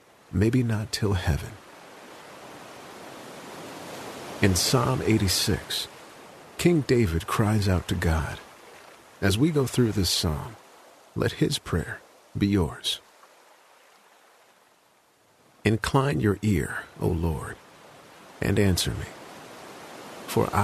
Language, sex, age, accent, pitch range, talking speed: English, male, 50-69, American, 85-110 Hz, 95 wpm